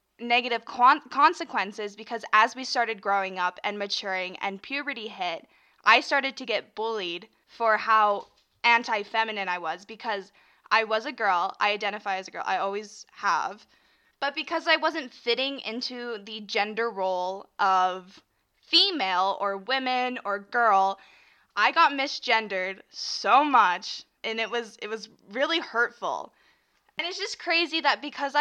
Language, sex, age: English, female, 10-29